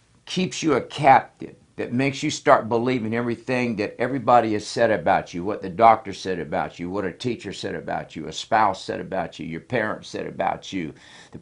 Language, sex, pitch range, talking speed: English, male, 100-120 Hz, 205 wpm